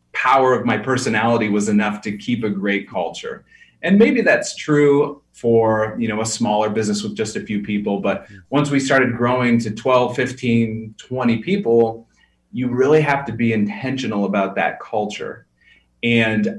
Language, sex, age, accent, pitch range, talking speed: English, male, 30-49, American, 105-130 Hz, 165 wpm